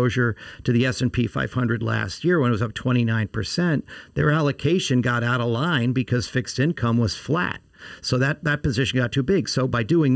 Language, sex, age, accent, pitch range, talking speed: English, male, 50-69, American, 120-140 Hz, 190 wpm